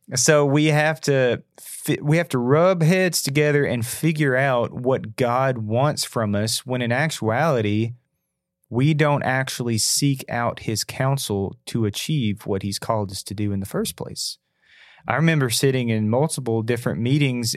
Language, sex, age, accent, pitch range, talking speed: English, male, 30-49, American, 110-140 Hz, 160 wpm